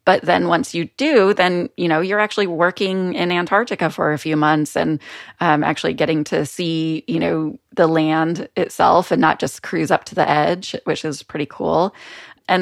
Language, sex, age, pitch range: English, female, 20-39, 160-185 Hz